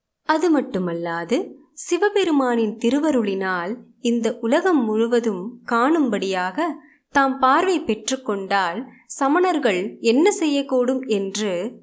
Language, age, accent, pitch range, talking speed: Tamil, 20-39, native, 210-285 Hz, 80 wpm